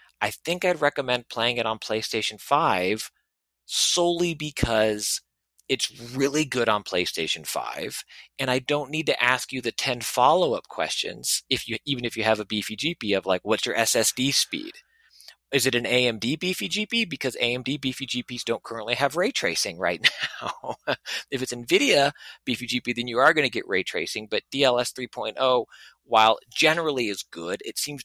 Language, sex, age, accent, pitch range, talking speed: English, male, 30-49, American, 110-145 Hz, 175 wpm